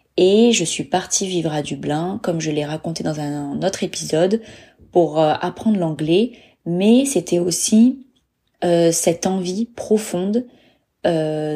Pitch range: 165-205 Hz